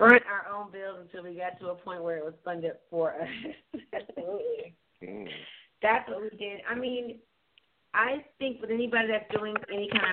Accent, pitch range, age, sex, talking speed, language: American, 175-215 Hz, 30-49, female, 180 wpm, English